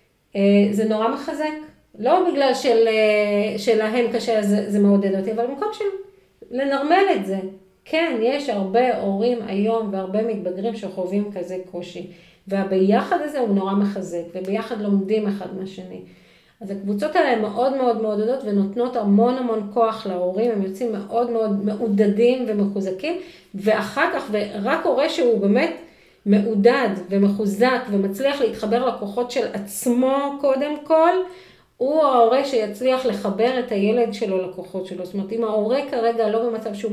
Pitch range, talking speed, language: 200-245 Hz, 140 wpm, Hebrew